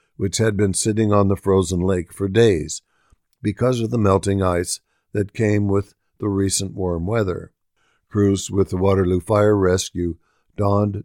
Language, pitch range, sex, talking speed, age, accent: English, 90-110 Hz, male, 160 wpm, 60-79, American